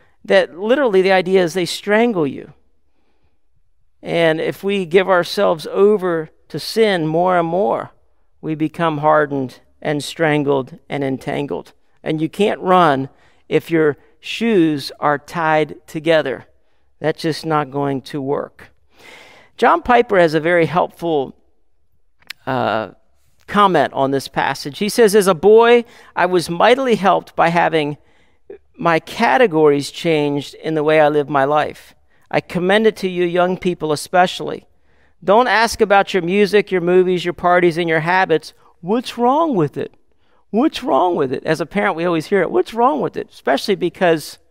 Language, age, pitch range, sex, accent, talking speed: English, 50-69, 155-215 Hz, male, American, 155 wpm